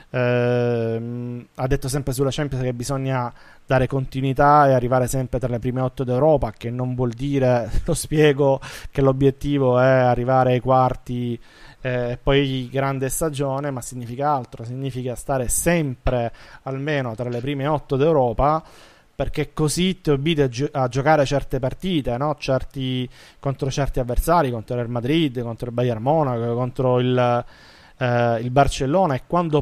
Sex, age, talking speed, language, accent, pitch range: male, 20-39, 155 wpm, Italian, native, 125-145 Hz